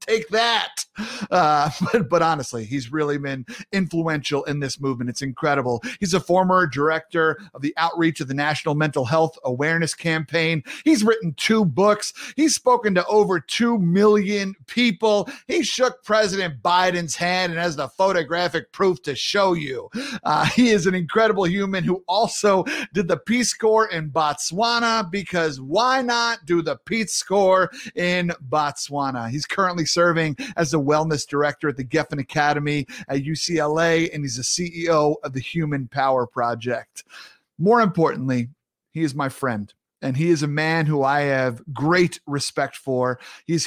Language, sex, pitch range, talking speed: English, male, 145-205 Hz, 160 wpm